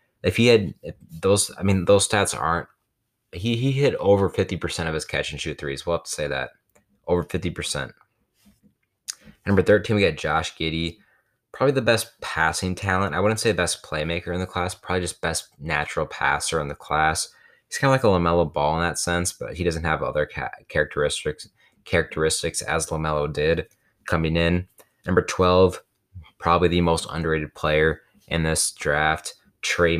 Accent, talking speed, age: American, 180 wpm, 20-39